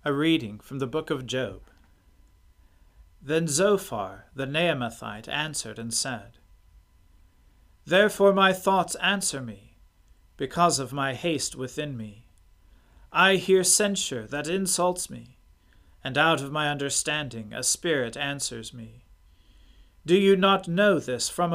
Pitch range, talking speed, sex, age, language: 105-170 Hz, 130 wpm, male, 40-59, English